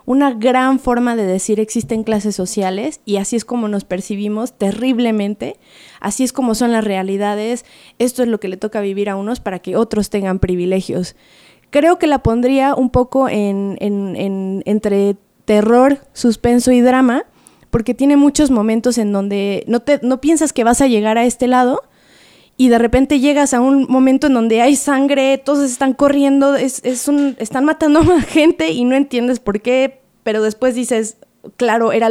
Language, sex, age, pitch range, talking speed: Spanish, female, 20-39, 210-260 Hz, 170 wpm